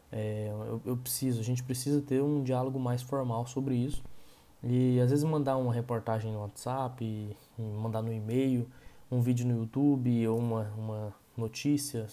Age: 20-39